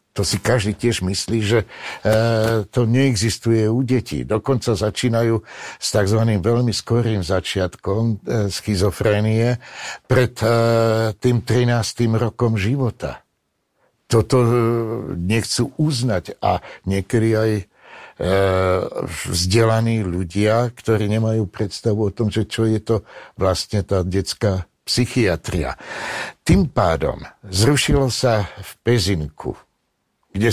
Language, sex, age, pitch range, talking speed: Slovak, male, 60-79, 100-120 Hz, 100 wpm